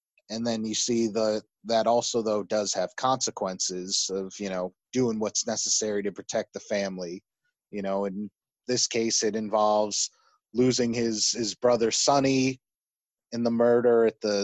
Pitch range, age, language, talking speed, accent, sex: 110-130 Hz, 20-39, English, 160 wpm, American, male